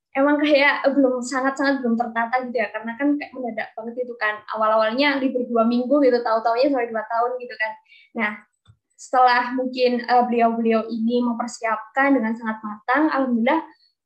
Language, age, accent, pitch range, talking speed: Indonesian, 20-39, native, 230-265 Hz, 160 wpm